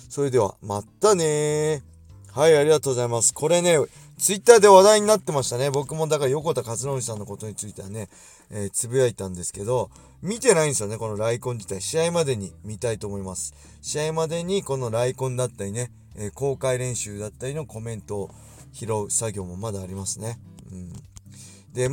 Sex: male